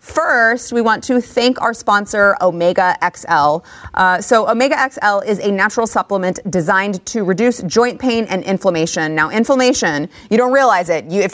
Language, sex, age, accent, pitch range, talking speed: English, female, 30-49, American, 190-250 Hz, 165 wpm